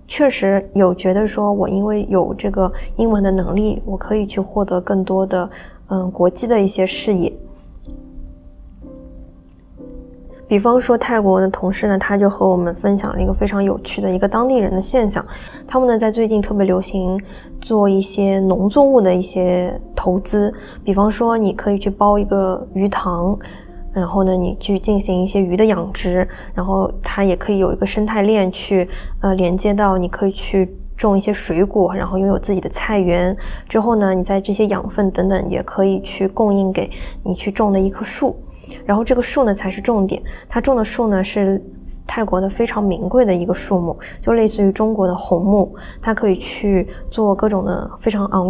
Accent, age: native, 20-39